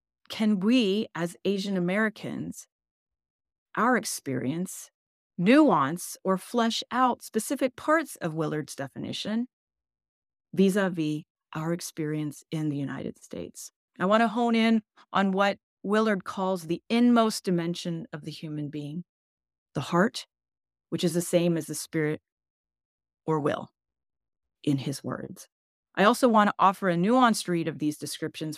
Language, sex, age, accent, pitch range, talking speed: English, female, 30-49, American, 155-225 Hz, 135 wpm